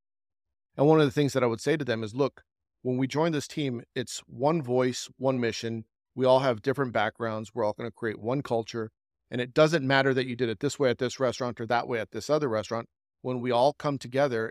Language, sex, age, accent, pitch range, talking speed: English, male, 40-59, American, 110-130 Hz, 250 wpm